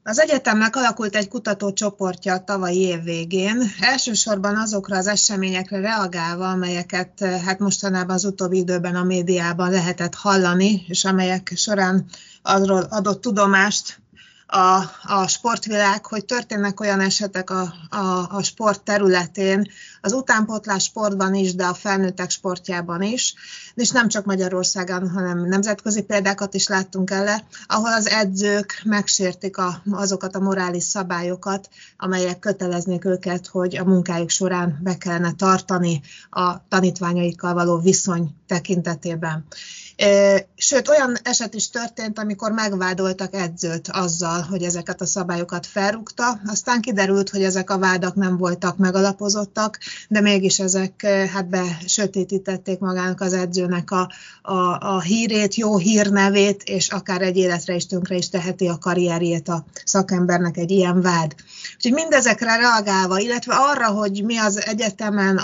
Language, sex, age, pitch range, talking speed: Hungarian, female, 30-49, 180-210 Hz, 130 wpm